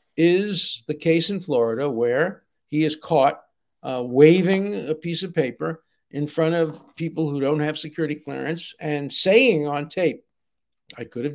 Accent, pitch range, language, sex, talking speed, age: American, 125-165 Hz, English, male, 165 wpm, 60-79